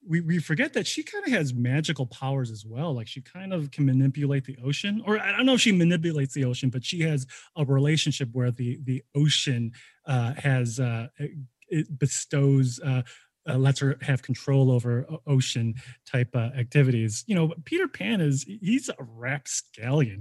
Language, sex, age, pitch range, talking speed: English, male, 20-39, 125-160 Hz, 185 wpm